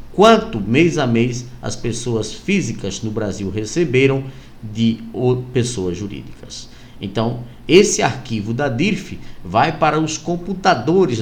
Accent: Brazilian